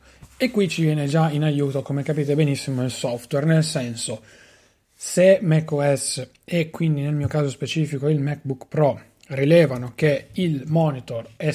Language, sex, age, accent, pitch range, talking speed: Italian, male, 30-49, native, 140-165 Hz, 155 wpm